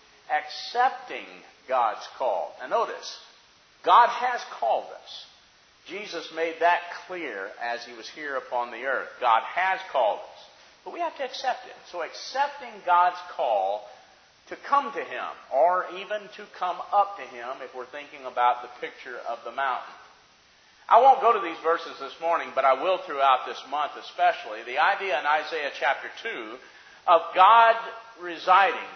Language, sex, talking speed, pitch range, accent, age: English, male, 160 wpm, 150-225 Hz, American, 50-69